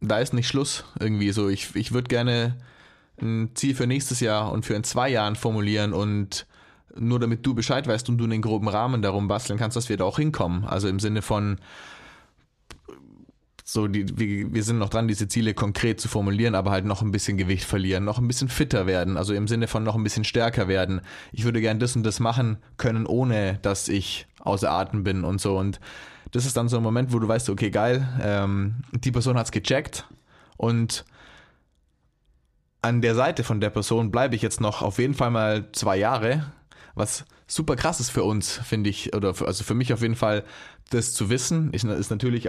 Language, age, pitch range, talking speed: German, 20-39, 105-120 Hz, 210 wpm